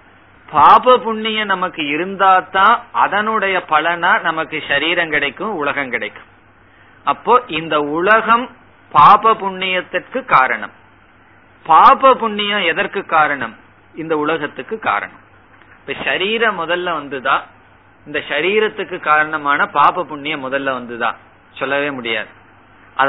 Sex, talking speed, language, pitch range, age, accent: male, 100 wpm, Tamil, 145-195 Hz, 30-49, native